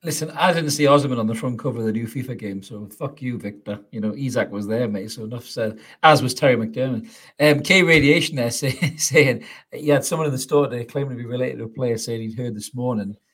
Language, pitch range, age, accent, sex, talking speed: English, 110-140 Hz, 40-59, British, male, 250 wpm